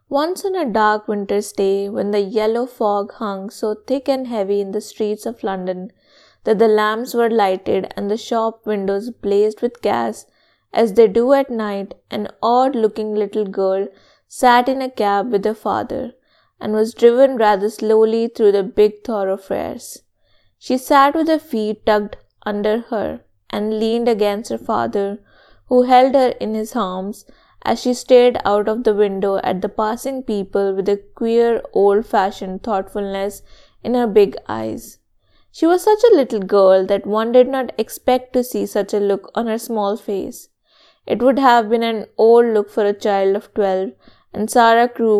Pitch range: 200-240 Hz